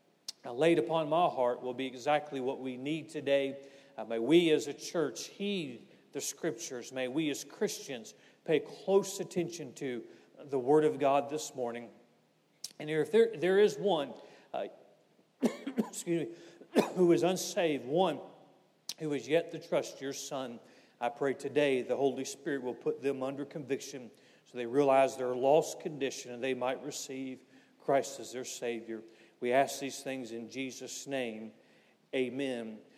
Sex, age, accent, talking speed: male, 40-59, American, 160 wpm